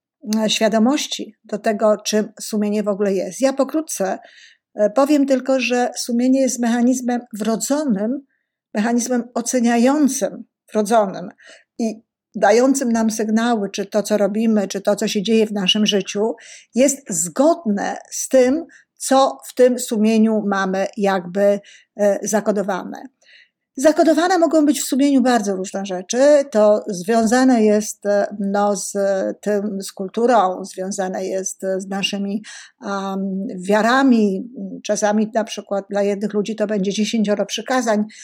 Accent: native